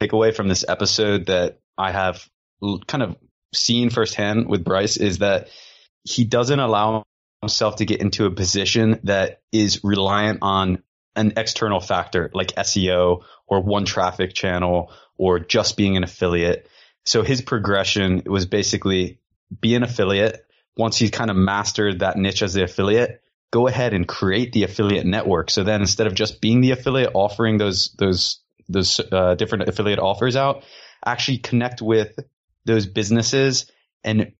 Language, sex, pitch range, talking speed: English, male, 95-115 Hz, 155 wpm